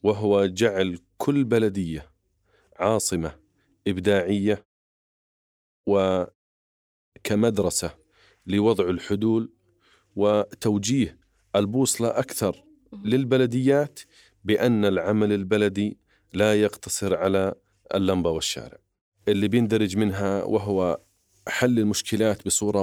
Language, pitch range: Arabic, 100-115 Hz